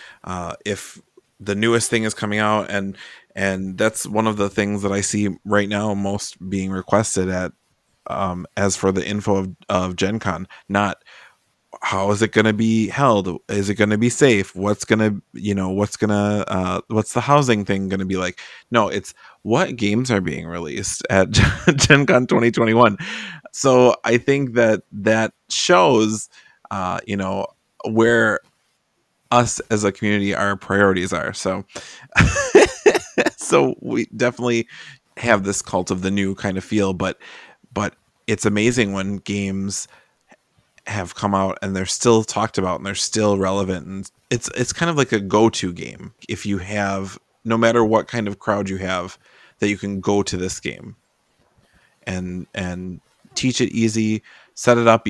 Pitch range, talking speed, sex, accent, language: 95-110 Hz, 165 wpm, male, American, English